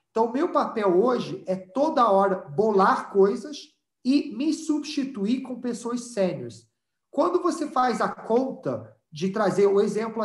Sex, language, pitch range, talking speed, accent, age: male, Portuguese, 190-245 Hz, 145 wpm, Brazilian, 40-59